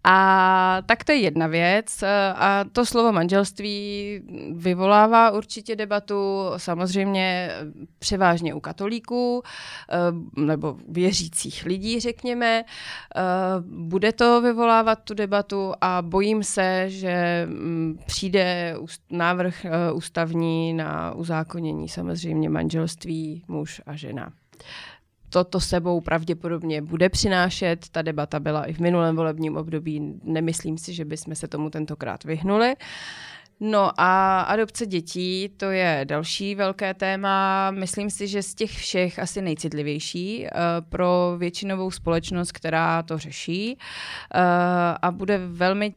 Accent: native